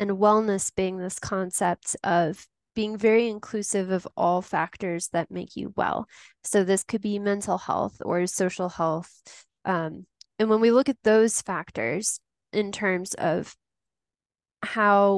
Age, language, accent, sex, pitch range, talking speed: 10-29, English, American, female, 180-215 Hz, 145 wpm